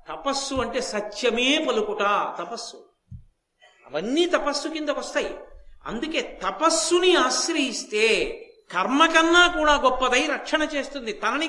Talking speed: 100 wpm